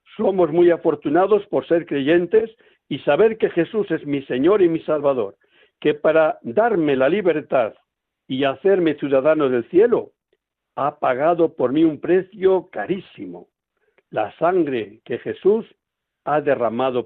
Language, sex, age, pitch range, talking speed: Spanish, male, 60-79, 145-195 Hz, 135 wpm